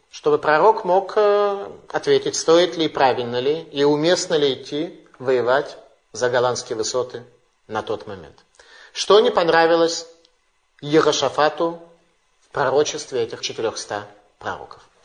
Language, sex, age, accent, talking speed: Russian, male, 30-49, native, 115 wpm